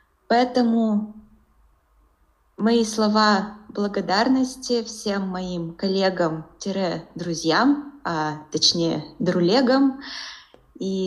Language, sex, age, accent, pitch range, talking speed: Russian, female, 20-39, native, 175-220 Hz, 60 wpm